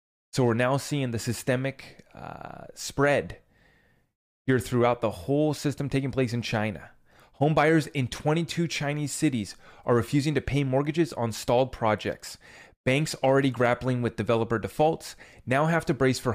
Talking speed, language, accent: 155 wpm, English, American